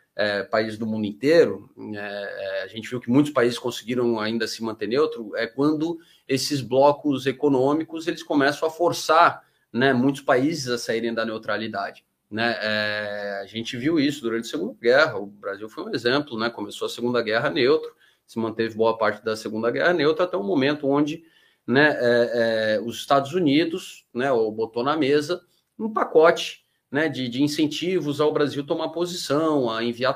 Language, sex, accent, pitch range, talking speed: Portuguese, male, Brazilian, 110-150 Hz, 180 wpm